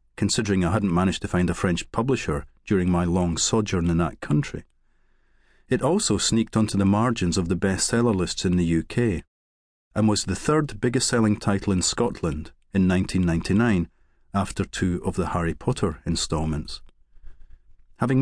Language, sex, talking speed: English, male, 155 wpm